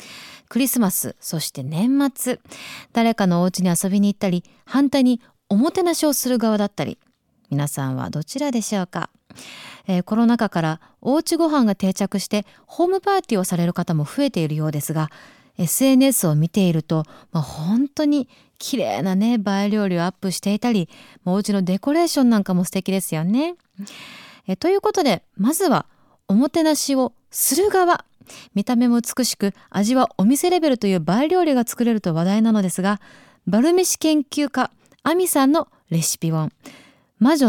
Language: Japanese